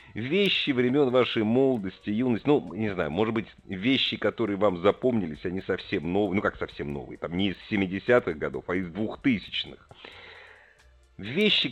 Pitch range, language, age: 100-150 Hz, Russian, 50-69